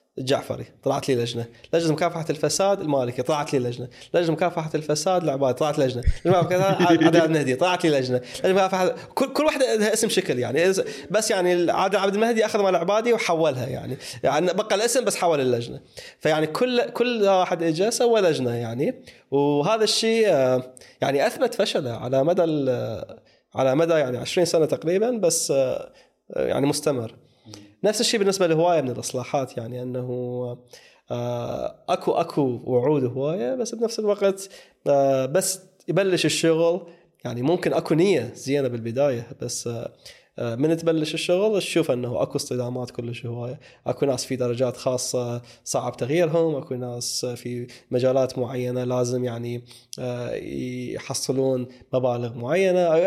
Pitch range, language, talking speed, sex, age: 125-185 Hz, Arabic, 135 wpm, male, 20-39